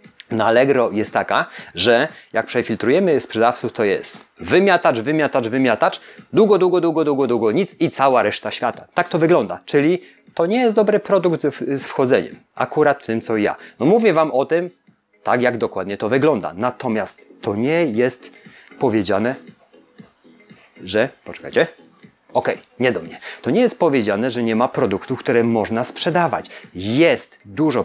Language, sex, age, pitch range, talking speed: Polish, male, 30-49, 115-165 Hz, 155 wpm